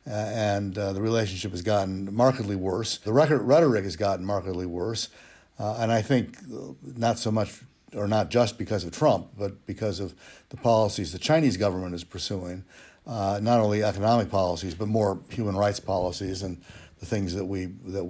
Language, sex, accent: English, male, American